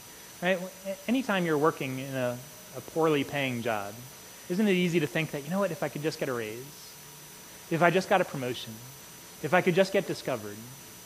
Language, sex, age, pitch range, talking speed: English, male, 30-49, 135-185 Hz, 200 wpm